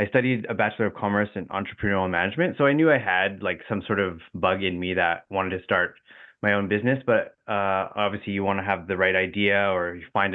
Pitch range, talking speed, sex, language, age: 95-110 Hz, 240 wpm, male, English, 20-39